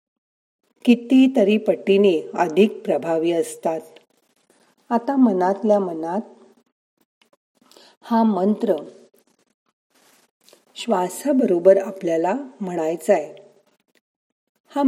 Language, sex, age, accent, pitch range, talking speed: Marathi, female, 40-59, native, 170-230 Hz, 70 wpm